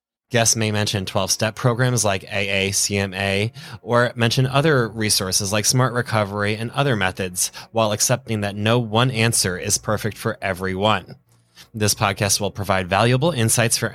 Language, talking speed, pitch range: English, 145 wpm, 100-130 Hz